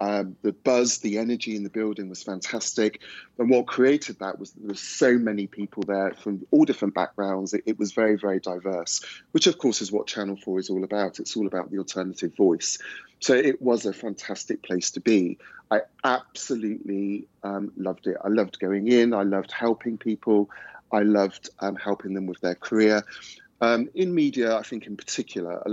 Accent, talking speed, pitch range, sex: British, 195 wpm, 95-115 Hz, male